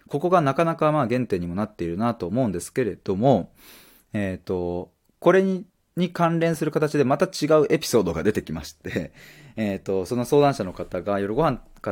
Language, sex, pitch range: Japanese, male, 95-155 Hz